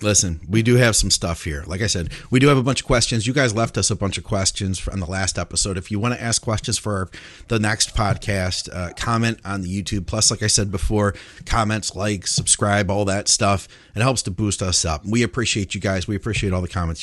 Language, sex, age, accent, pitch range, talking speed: English, male, 40-59, American, 95-125 Hz, 245 wpm